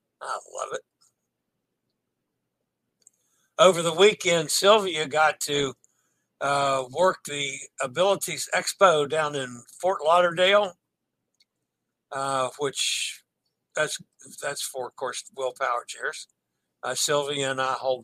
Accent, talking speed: American, 105 wpm